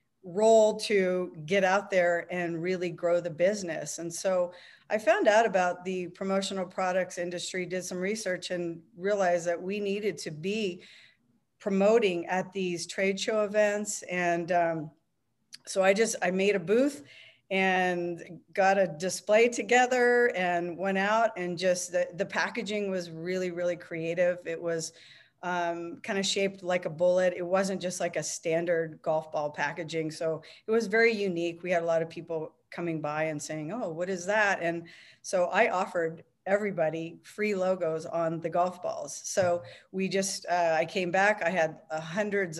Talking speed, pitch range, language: 170 wpm, 170-195 Hz, English